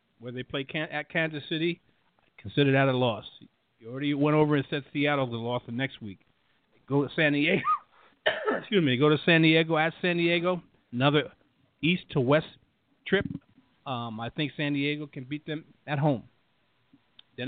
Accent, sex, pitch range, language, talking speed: American, male, 120-150 Hz, English, 175 wpm